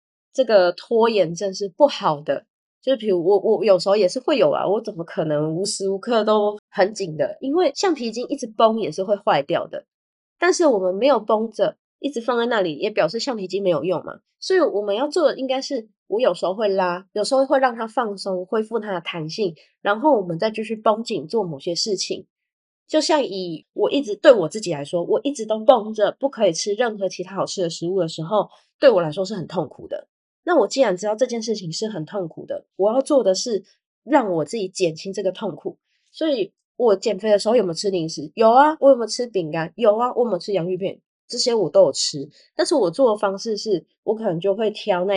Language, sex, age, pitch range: Chinese, female, 20-39, 185-255 Hz